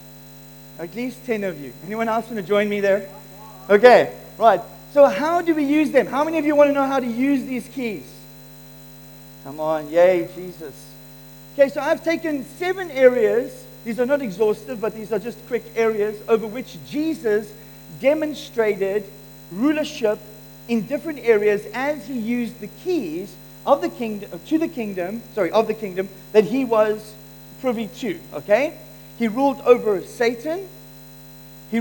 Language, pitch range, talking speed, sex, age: English, 215-290 Hz, 160 wpm, male, 40-59